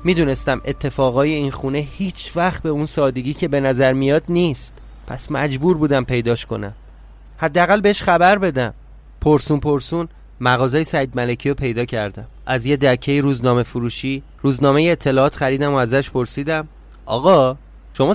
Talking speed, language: 145 wpm, Persian